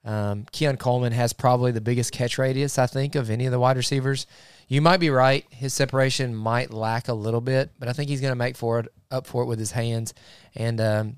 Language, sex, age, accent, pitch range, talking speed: English, male, 20-39, American, 110-130 Hz, 240 wpm